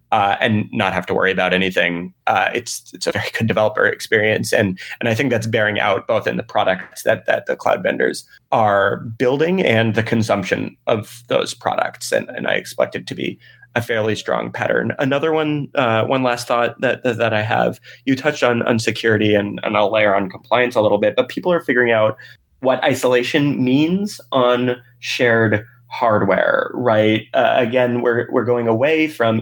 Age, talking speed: 20-39, 190 wpm